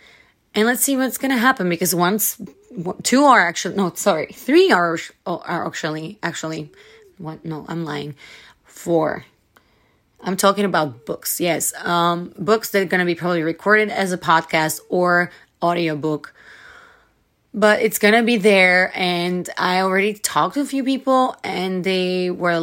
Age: 20-39